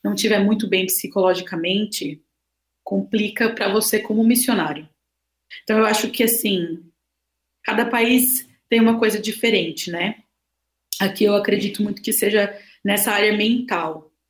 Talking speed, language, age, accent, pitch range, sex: 130 wpm, Portuguese, 20-39, Brazilian, 185-230 Hz, female